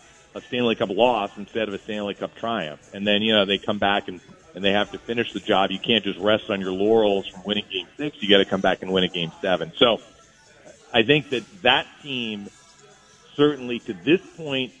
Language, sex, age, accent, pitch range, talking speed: English, male, 40-59, American, 95-115 Hz, 225 wpm